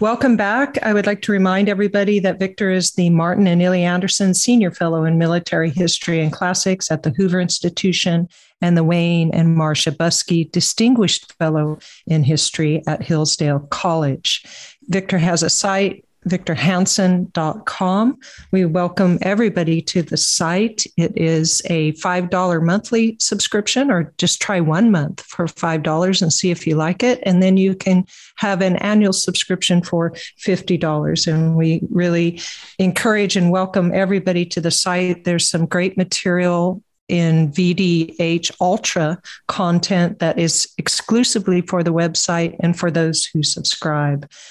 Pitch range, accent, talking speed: 165-195 Hz, American, 145 wpm